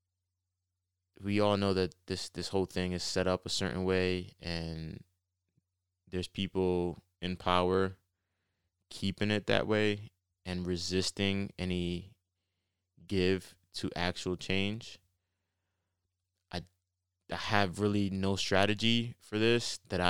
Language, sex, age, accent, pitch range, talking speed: English, male, 20-39, American, 90-95 Hz, 115 wpm